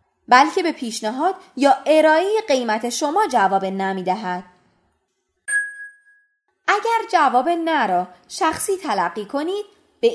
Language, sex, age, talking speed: Persian, female, 20-39, 100 wpm